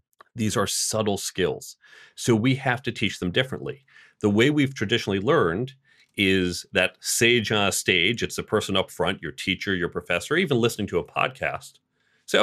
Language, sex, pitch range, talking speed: English, male, 95-125 Hz, 180 wpm